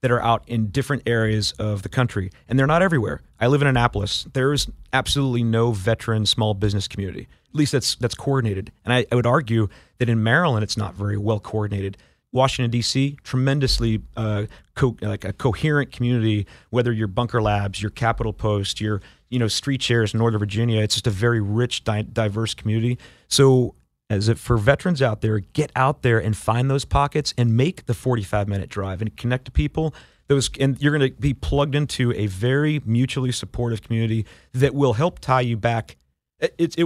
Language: English